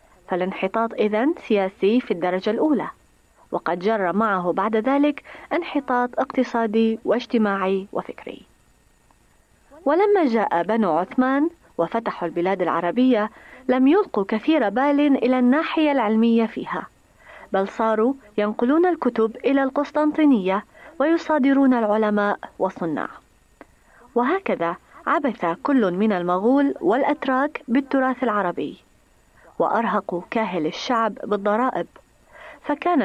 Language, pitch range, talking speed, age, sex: Arabic, 200-280 Hz, 95 wpm, 30-49, female